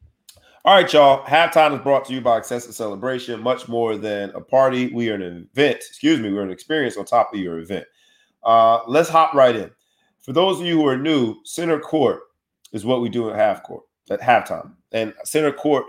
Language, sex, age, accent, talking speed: English, male, 30-49, American, 205 wpm